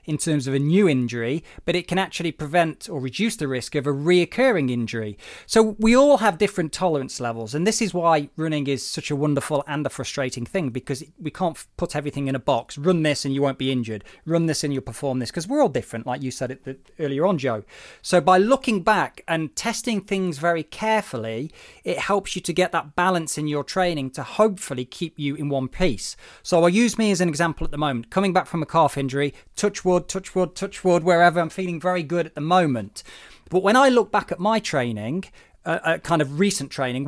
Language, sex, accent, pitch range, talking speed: English, male, British, 140-195 Hz, 230 wpm